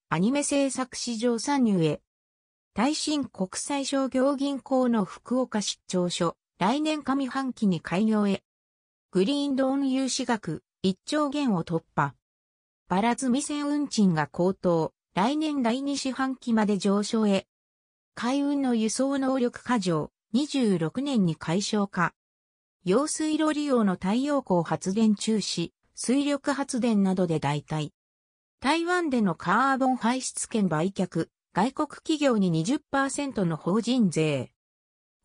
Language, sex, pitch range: Japanese, female, 170-270 Hz